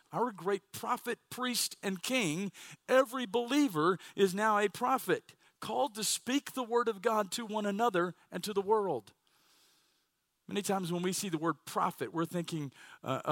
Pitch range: 170-235 Hz